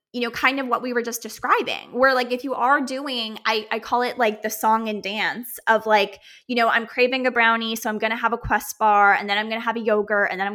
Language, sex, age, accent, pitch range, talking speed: English, female, 20-39, American, 210-285 Hz, 290 wpm